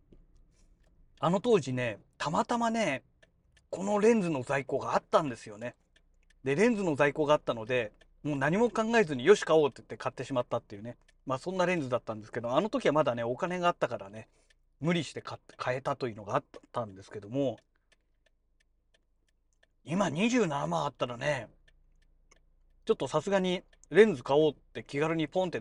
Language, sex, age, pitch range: Japanese, male, 40-59, 130-200 Hz